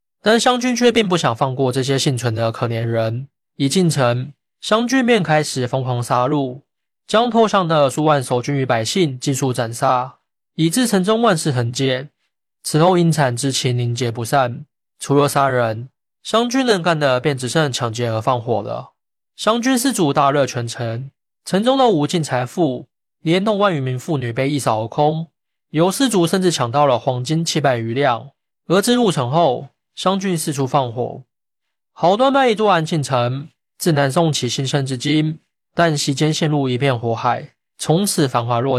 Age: 20-39